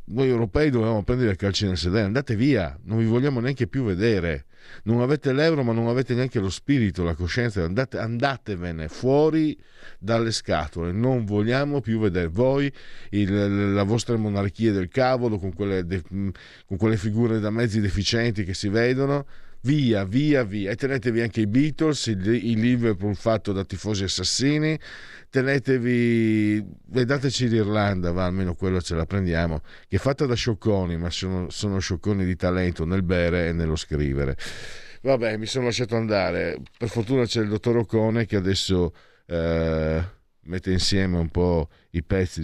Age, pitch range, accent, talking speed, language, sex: 50-69, 90-120 Hz, native, 160 wpm, Italian, male